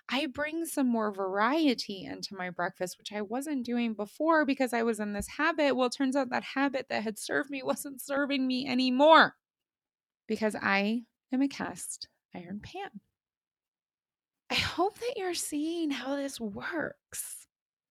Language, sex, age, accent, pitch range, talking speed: English, female, 20-39, American, 210-285 Hz, 160 wpm